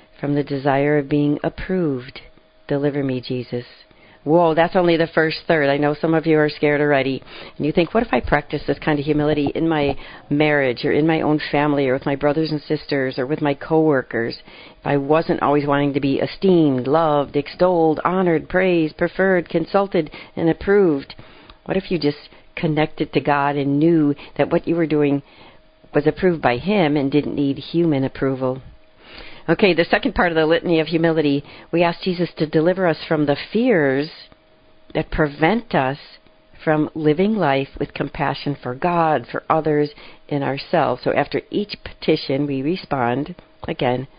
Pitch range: 140-165 Hz